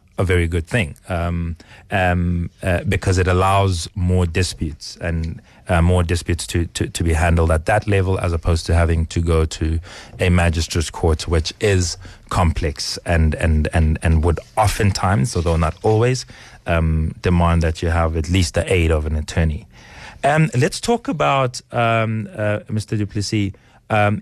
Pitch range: 90-110 Hz